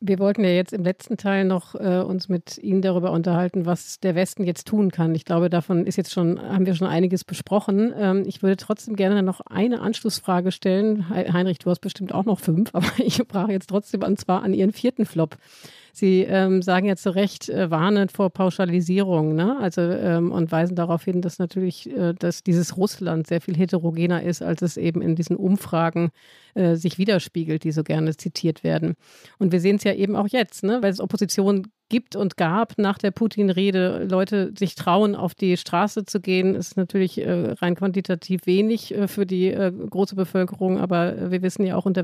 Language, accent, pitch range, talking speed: German, German, 175-205 Hz, 200 wpm